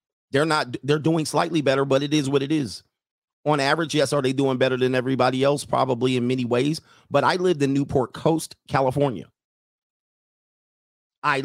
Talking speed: 180 wpm